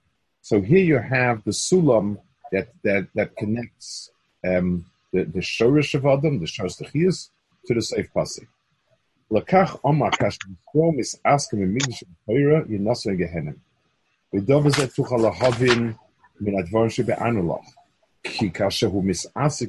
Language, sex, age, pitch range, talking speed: English, male, 50-69, 105-140 Hz, 40 wpm